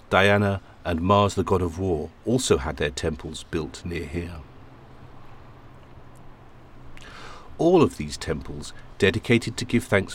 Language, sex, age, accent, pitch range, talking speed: English, male, 50-69, British, 80-110 Hz, 130 wpm